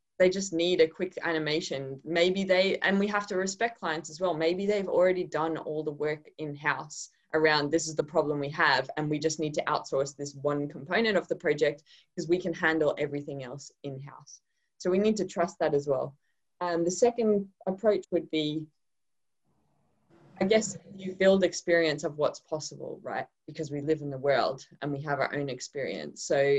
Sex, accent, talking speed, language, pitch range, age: female, Australian, 195 wpm, English, 145-185 Hz, 20-39